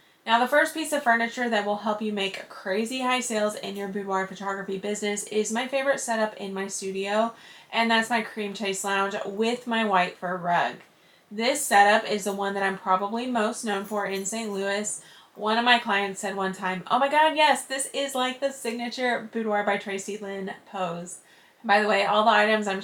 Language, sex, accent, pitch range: English, female, American, 195-235 Hz